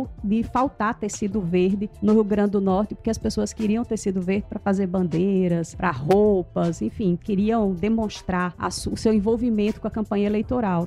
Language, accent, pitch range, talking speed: English, Brazilian, 195-235 Hz, 175 wpm